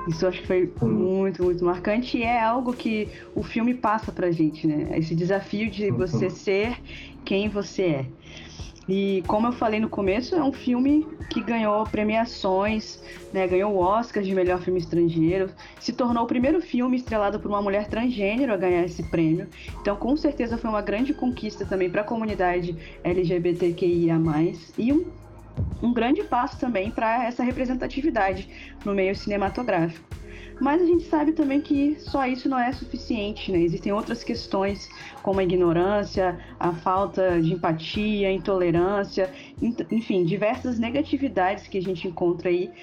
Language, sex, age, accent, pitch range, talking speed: Portuguese, female, 20-39, Brazilian, 180-240 Hz, 160 wpm